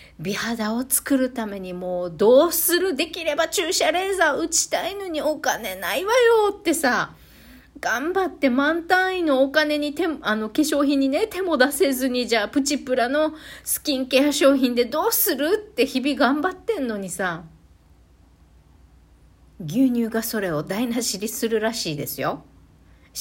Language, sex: Japanese, female